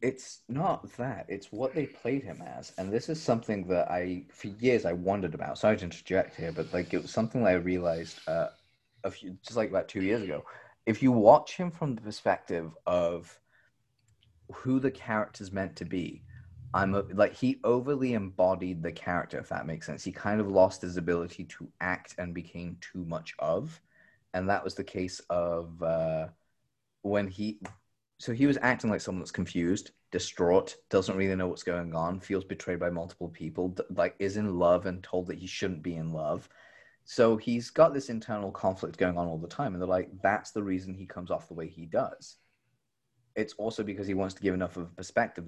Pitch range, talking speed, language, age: 90-120 Hz, 200 wpm, English, 30-49